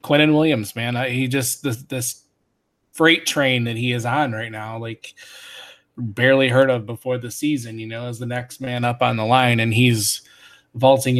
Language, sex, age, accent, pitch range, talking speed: English, male, 20-39, American, 115-135 Hz, 190 wpm